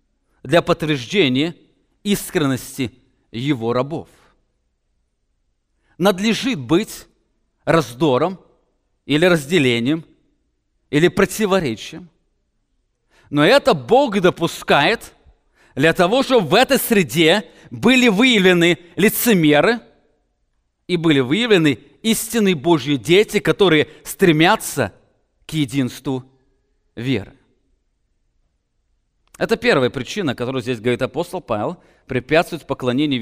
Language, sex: English, male